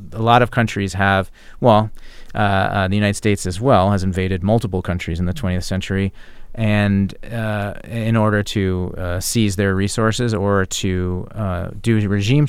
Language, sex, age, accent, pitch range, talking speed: English, male, 30-49, American, 95-115 Hz, 170 wpm